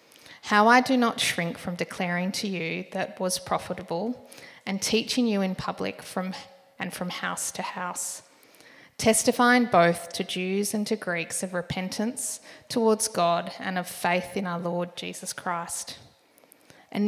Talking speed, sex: 150 wpm, female